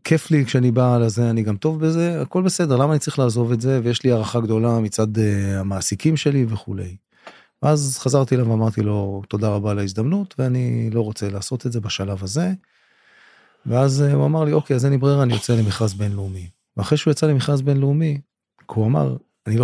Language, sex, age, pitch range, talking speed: Hebrew, male, 30-49, 110-140 Hz, 195 wpm